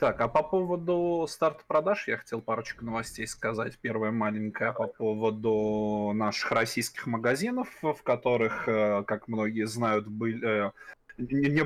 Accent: native